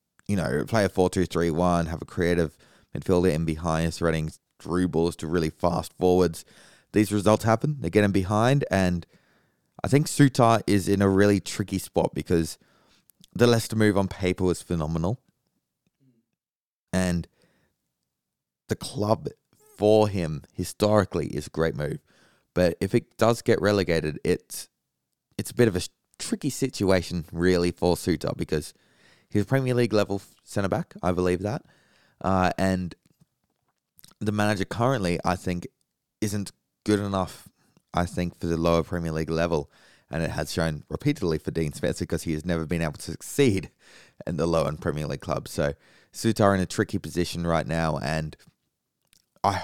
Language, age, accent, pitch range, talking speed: English, 20-39, Australian, 85-105 Hz, 160 wpm